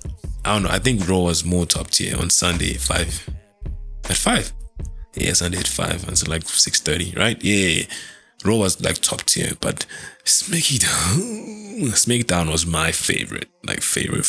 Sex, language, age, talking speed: male, English, 20-39, 170 wpm